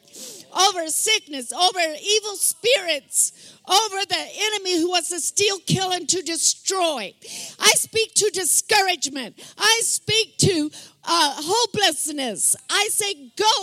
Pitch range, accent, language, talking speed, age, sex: 290-390 Hz, American, English, 125 wpm, 50-69, female